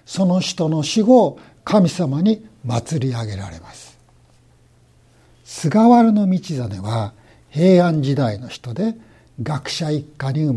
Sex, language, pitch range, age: male, Japanese, 125-180 Hz, 60-79